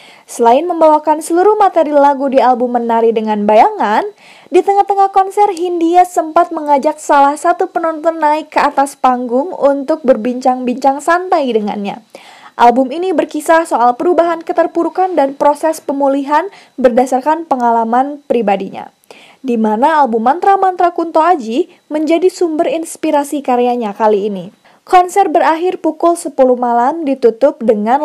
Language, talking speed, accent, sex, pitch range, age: Indonesian, 125 wpm, native, female, 250-335 Hz, 20-39